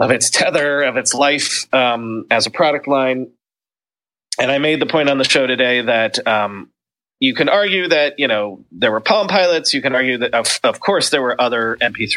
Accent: American